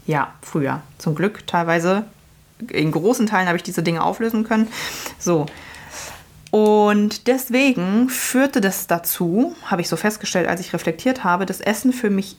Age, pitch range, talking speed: 20-39, 185-220 Hz, 155 wpm